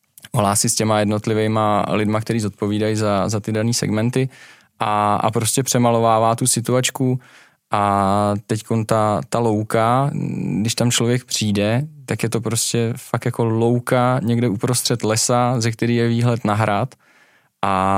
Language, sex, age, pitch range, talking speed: Czech, male, 20-39, 105-120 Hz, 145 wpm